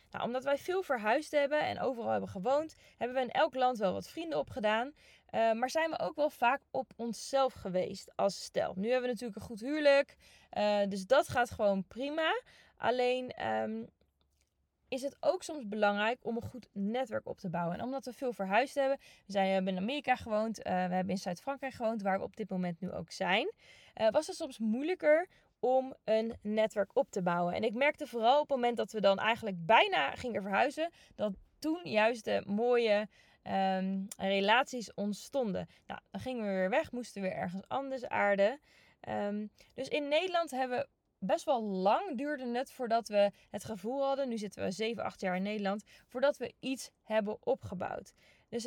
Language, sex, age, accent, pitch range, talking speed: Dutch, female, 20-39, Dutch, 205-270 Hz, 190 wpm